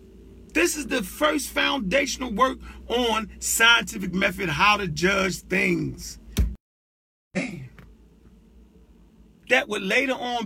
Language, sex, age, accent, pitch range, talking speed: English, male, 40-59, American, 185-260 Hz, 105 wpm